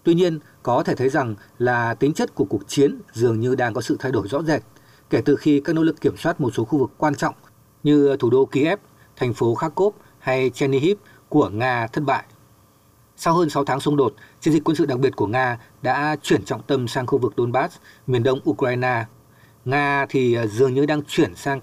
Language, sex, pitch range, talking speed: Vietnamese, male, 120-145 Hz, 220 wpm